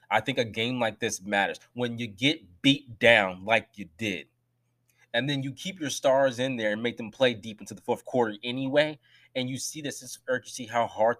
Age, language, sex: 20-39, English, male